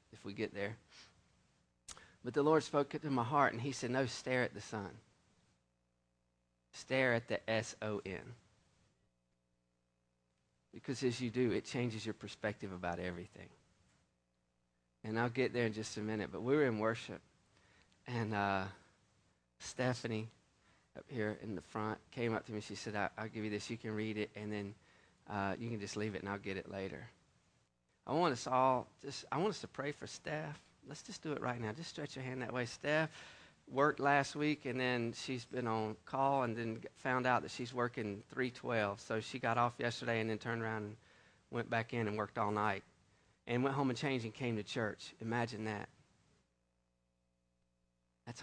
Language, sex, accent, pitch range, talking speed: English, male, American, 95-125 Hz, 190 wpm